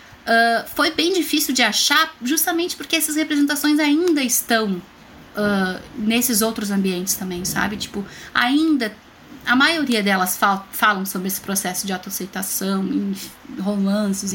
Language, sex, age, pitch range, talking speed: Portuguese, female, 20-39, 200-245 Hz, 135 wpm